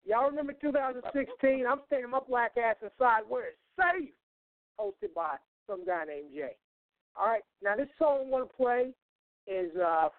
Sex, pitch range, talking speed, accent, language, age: male, 175-240 Hz, 170 wpm, American, English, 50-69